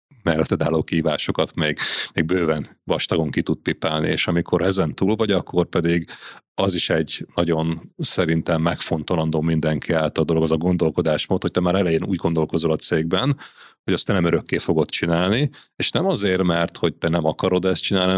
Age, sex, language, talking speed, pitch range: 30-49, male, Hungarian, 180 wpm, 80-95 Hz